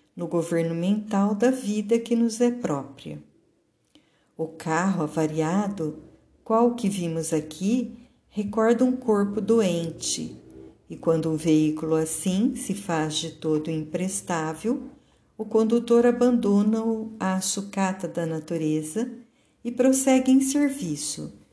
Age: 50-69